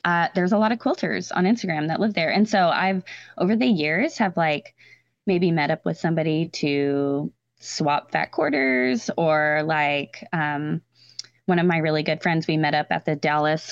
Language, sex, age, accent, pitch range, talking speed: English, female, 20-39, American, 155-215 Hz, 190 wpm